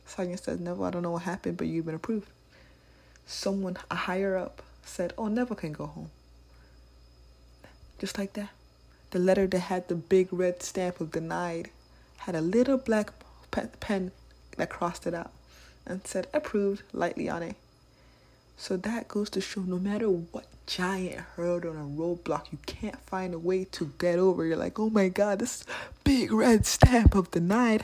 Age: 20-39